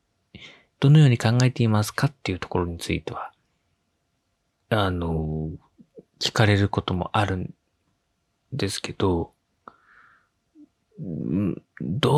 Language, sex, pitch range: Japanese, male, 95-125 Hz